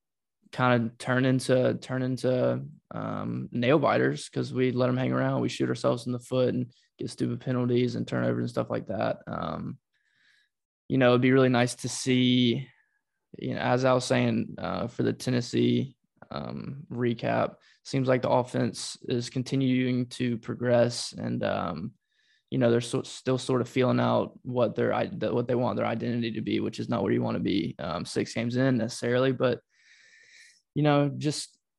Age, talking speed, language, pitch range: 20-39, 180 wpm, English, 115-130 Hz